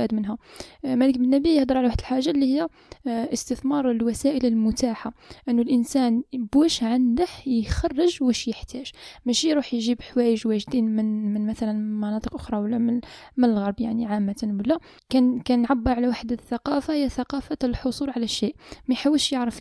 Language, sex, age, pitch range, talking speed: Arabic, female, 10-29, 225-270 Hz, 150 wpm